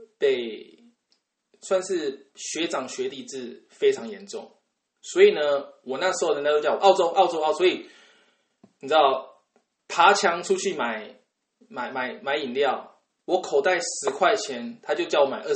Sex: male